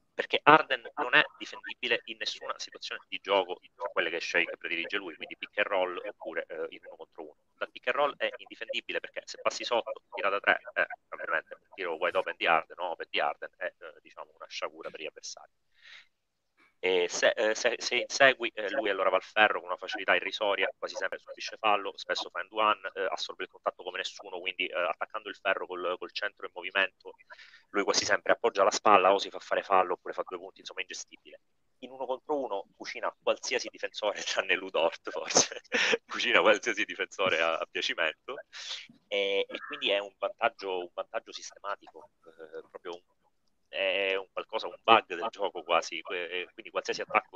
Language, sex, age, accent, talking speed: Italian, male, 30-49, native, 195 wpm